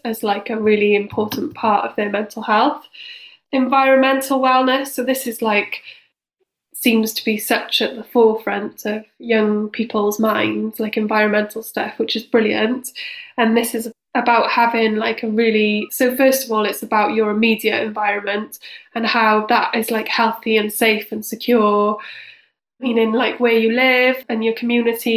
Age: 10-29